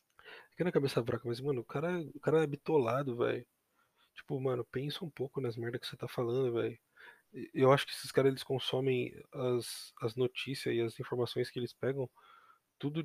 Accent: Brazilian